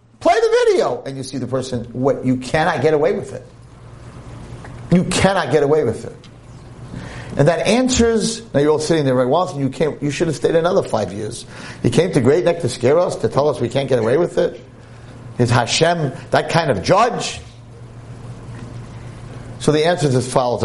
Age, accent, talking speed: 50-69, American, 200 wpm